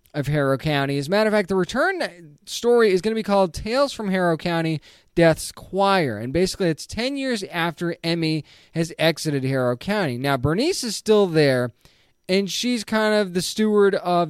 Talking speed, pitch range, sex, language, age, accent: 190 wpm, 140-200 Hz, male, English, 20-39, American